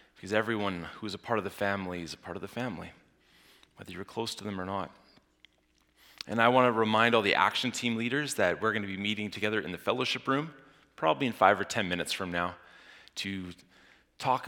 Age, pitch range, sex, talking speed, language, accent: 30-49, 85-110 Hz, male, 205 wpm, English, American